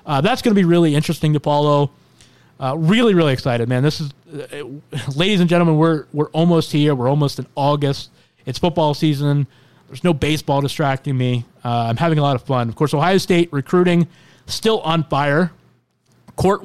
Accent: American